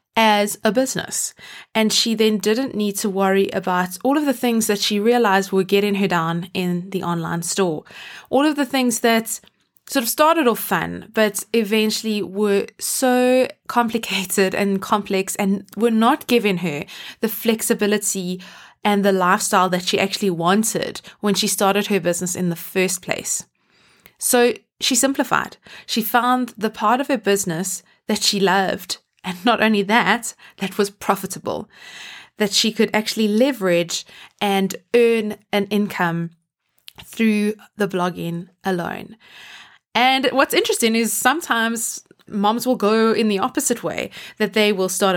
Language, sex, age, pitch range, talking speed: English, female, 20-39, 190-235 Hz, 155 wpm